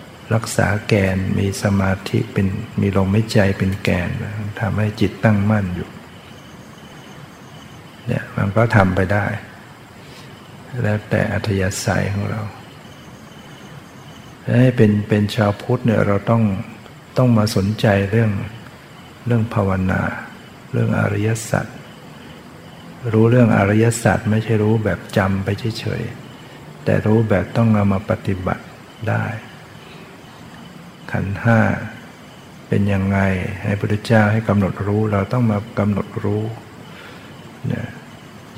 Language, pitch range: Thai, 100-115 Hz